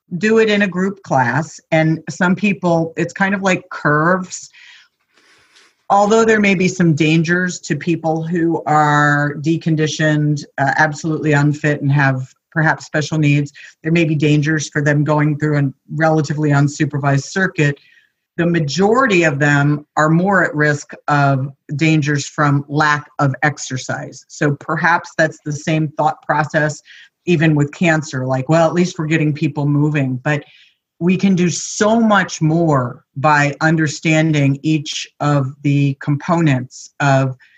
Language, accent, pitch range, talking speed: English, American, 140-165 Hz, 145 wpm